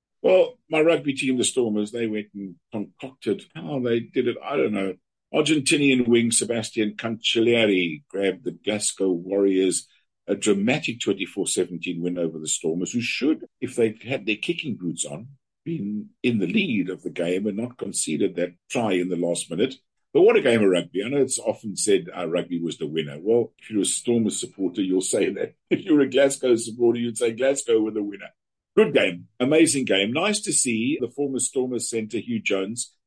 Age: 50-69